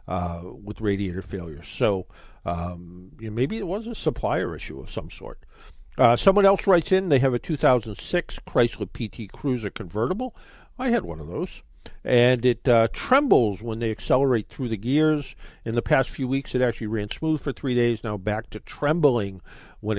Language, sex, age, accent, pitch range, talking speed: English, male, 50-69, American, 105-135 Hz, 180 wpm